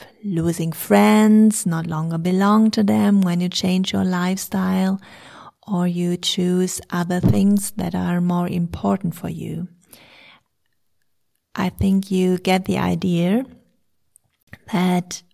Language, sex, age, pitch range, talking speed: English, female, 40-59, 175-200 Hz, 115 wpm